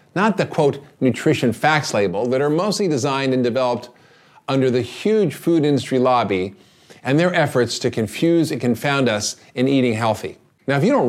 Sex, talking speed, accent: male, 180 wpm, American